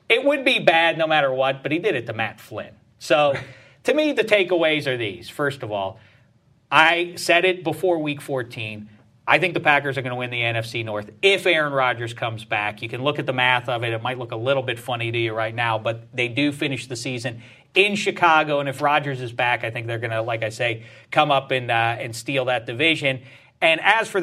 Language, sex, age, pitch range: English, male, 40-59, 120-175 Hz